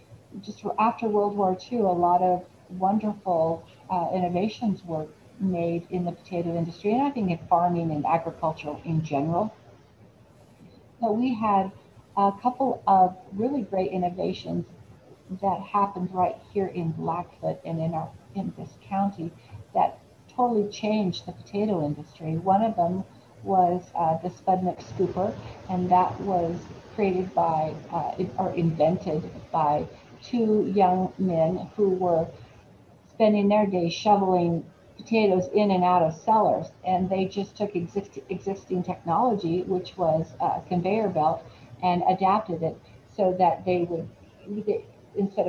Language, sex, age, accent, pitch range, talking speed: English, female, 40-59, American, 165-200 Hz, 135 wpm